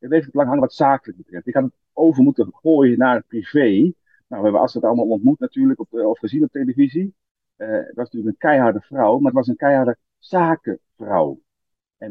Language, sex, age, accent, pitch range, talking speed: Dutch, male, 40-59, Dutch, 115-195 Hz, 225 wpm